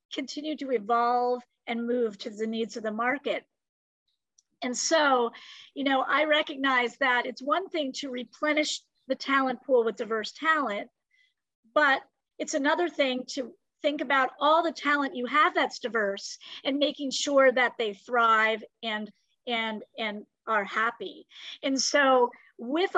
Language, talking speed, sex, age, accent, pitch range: English, 150 wpm, female, 50-69, American, 235-290 Hz